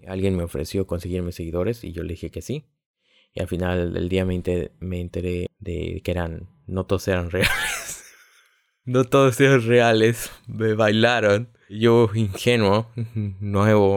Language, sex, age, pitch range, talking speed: Spanish, male, 20-39, 90-115 Hz, 160 wpm